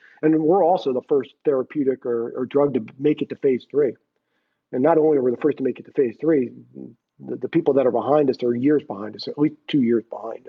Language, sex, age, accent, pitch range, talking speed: English, male, 50-69, American, 130-150 Hz, 250 wpm